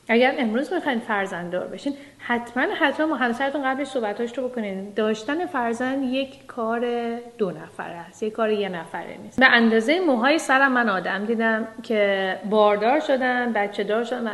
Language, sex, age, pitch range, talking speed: Persian, female, 40-59, 205-265 Hz, 160 wpm